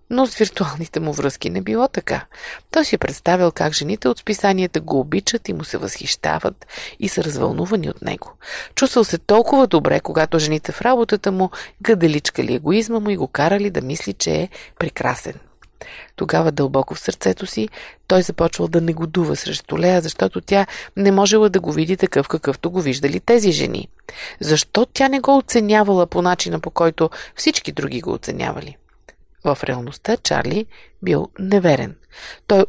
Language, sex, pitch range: Bulgarian, female, 155-210 Hz